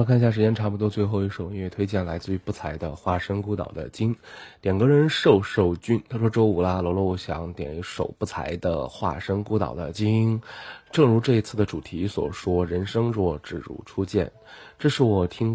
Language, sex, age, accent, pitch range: Chinese, male, 20-39, native, 90-110 Hz